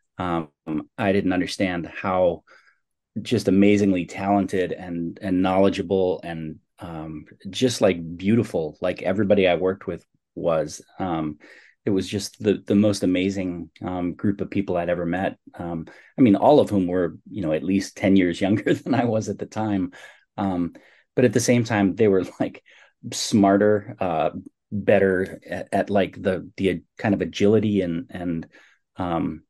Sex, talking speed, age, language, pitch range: male, 165 wpm, 30-49, English, 85-100 Hz